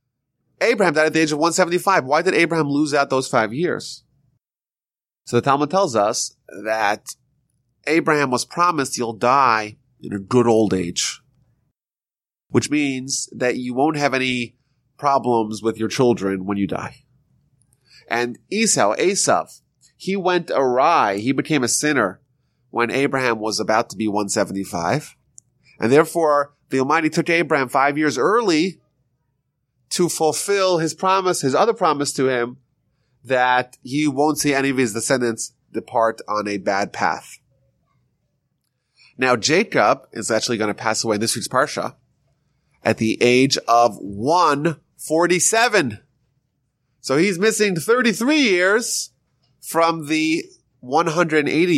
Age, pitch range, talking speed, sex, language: 30-49, 120-155 Hz, 135 wpm, male, English